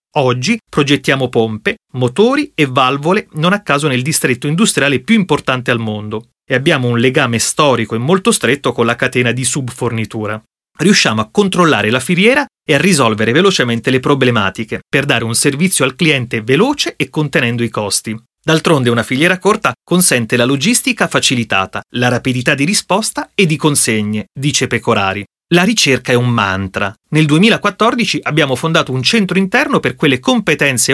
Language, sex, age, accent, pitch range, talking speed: Italian, male, 30-49, native, 120-175 Hz, 160 wpm